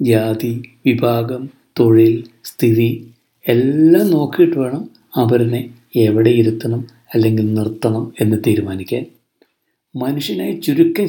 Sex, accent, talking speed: male, native, 85 wpm